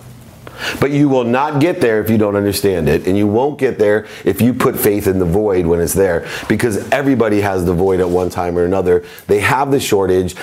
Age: 40-59